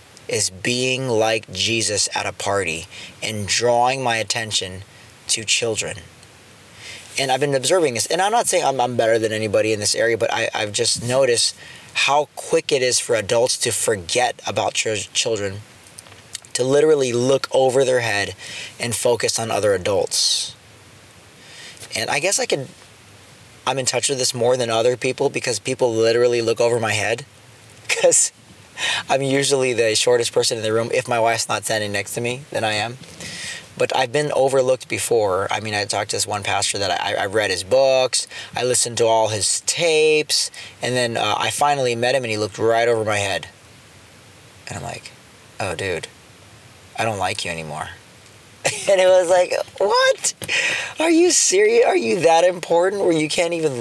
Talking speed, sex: 180 wpm, male